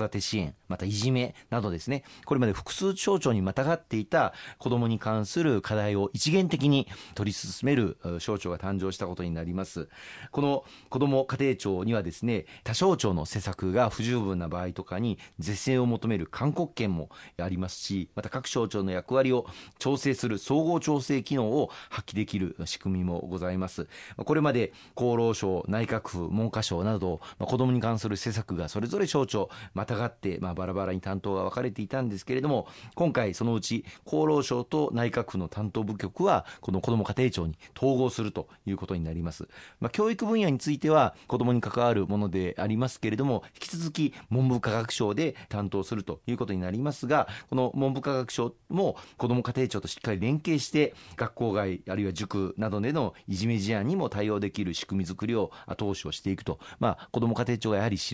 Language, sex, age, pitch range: Japanese, male, 40-59, 95-130 Hz